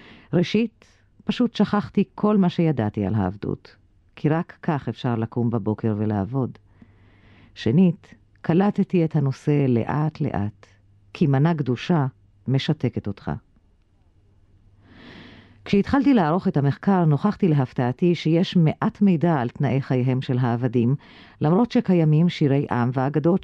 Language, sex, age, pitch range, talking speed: Hebrew, female, 50-69, 115-170 Hz, 115 wpm